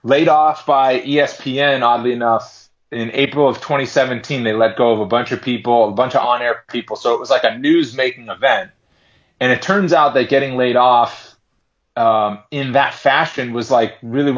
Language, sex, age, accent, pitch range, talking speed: English, male, 30-49, American, 115-130 Hz, 190 wpm